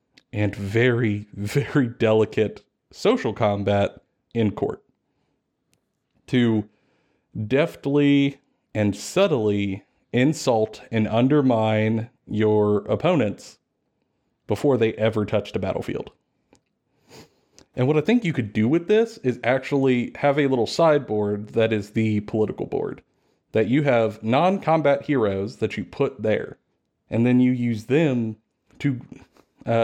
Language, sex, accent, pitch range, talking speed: English, male, American, 110-140 Hz, 120 wpm